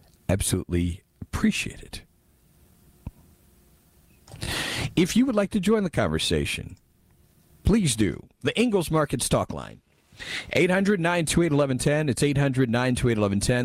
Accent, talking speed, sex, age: American, 145 wpm, male, 50-69